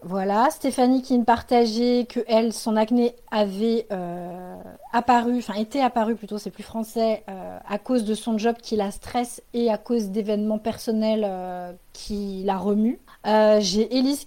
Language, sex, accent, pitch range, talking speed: French, female, French, 210-245 Hz, 170 wpm